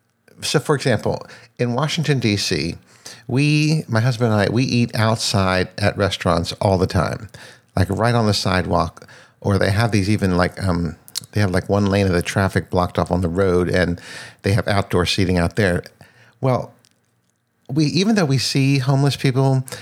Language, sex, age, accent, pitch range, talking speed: English, male, 50-69, American, 95-125 Hz, 180 wpm